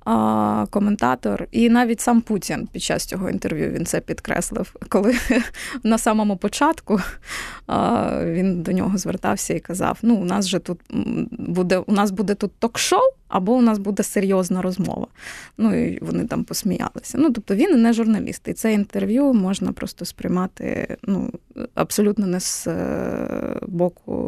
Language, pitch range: Ukrainian, 195-240 Hz